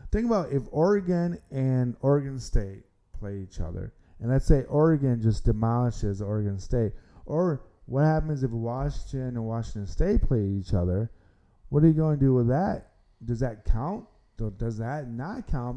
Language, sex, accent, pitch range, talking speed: English, male, American, 110-135 Hz, 165 wpm